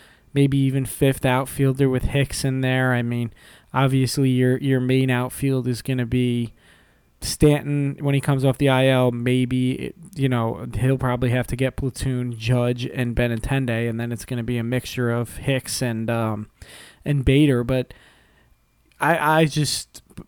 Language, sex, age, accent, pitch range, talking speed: English, male, 20-39, American, 125-140 Hz, 165 wpm